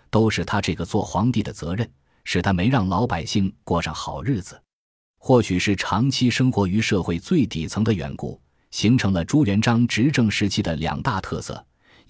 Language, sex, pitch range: Chinese, male, 85-115 Hz